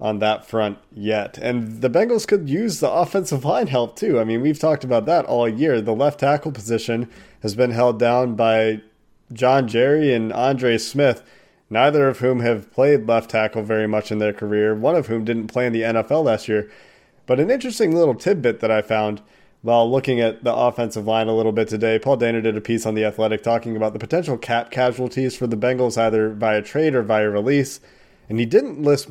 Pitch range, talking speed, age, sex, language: 110-145 Hz, 215 wpm, 30-49, male, English